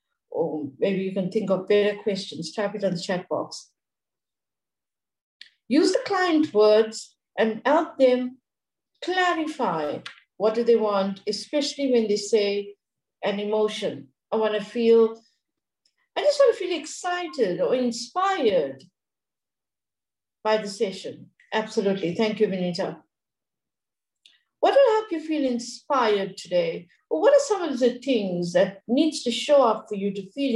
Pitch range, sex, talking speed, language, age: 210-300 Hz, female, 145 wpm, English, 60-79